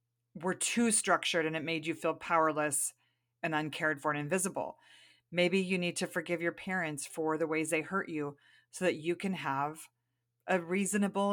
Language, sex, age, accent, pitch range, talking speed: English, female, 40-59, American, 150-185 Hz, 180 wpm